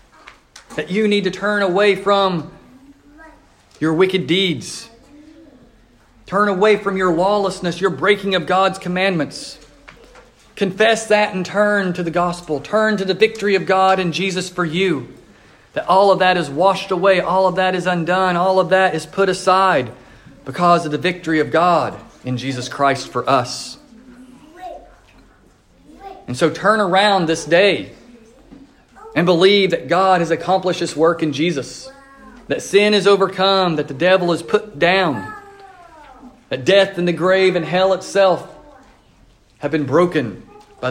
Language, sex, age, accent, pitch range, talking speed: English, male, 40-59, American, 170-210 Hz, 155 wpm